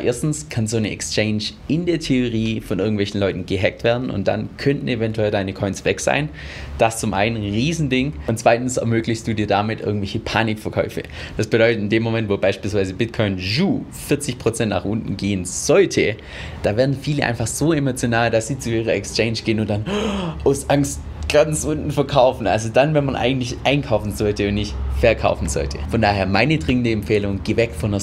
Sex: male